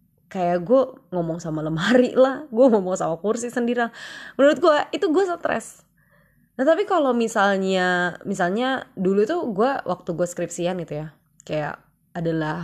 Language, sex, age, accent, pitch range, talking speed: Indonesian, female, 20-39, native, 170-250 Hz, 150 wpm